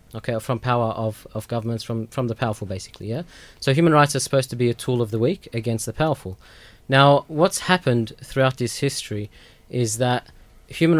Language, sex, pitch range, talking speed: English, male, 115-140 Hz, 195 wpm